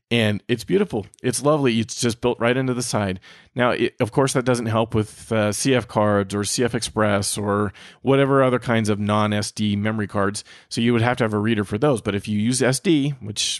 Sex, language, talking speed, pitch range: male, English, 215 wpm, 100-120 Hz